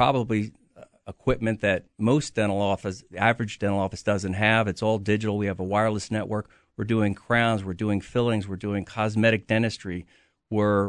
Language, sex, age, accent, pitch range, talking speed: English, male, 50-69, American, 105-125 Hz, 165 wpm